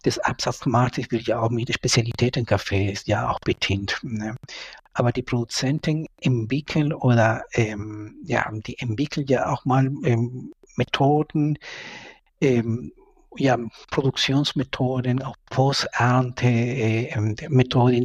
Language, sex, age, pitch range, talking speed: German, male, 60-79, 110-135 Hz, 105 wpm